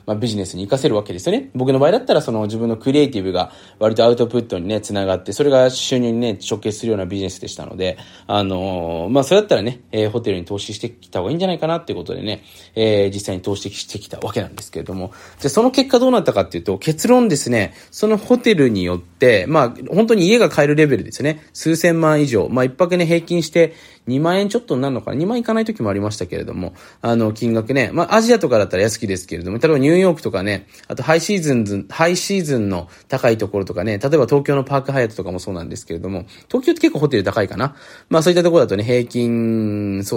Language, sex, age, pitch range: Japanese, male, 20-39, 100-150 Hz